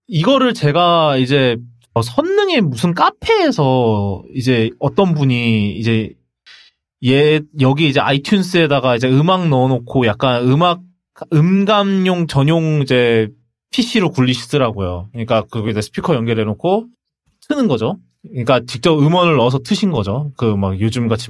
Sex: male